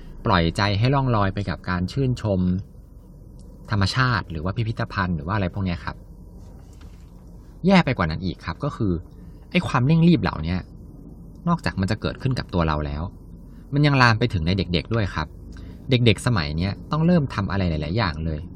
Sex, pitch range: male, 85-110 Hz